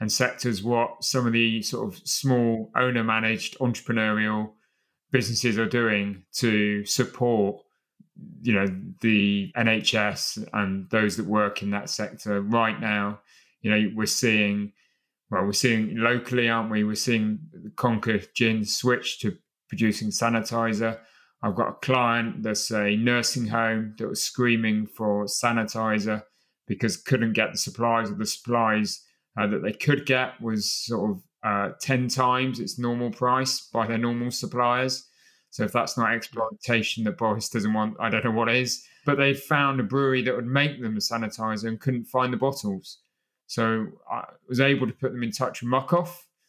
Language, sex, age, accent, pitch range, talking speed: English, male, 30-49, British, 110-125 Hz, 165 wpm